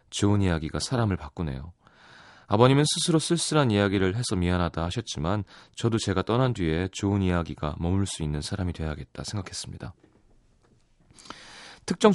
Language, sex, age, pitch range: Korean, male, 30-49, 80-115 Hz